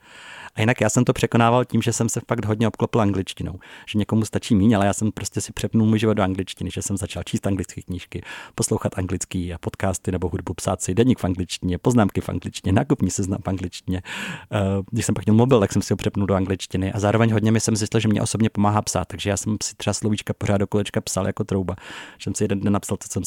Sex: male